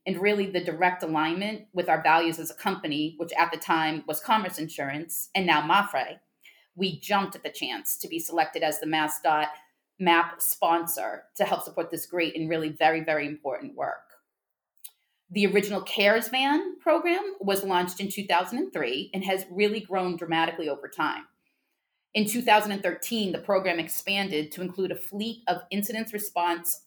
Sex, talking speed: female, 165 wpm